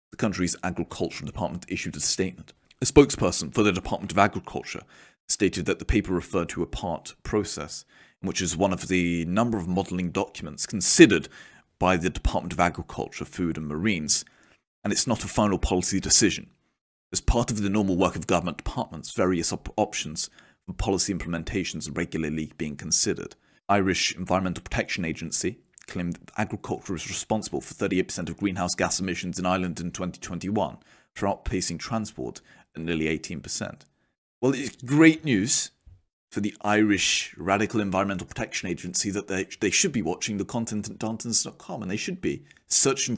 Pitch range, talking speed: 85-105 Hz, 165 wpm